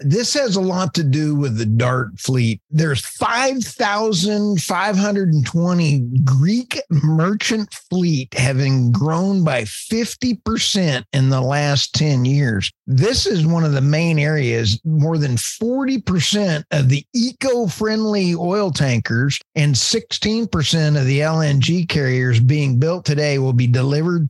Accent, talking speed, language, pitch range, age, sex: American, 145 wpm, English, 130-180 Hz, 50-69, male